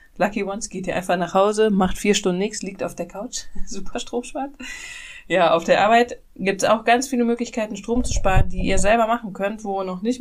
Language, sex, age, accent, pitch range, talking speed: German, female, 20-39, German, 170-215 Hz, 230 wpm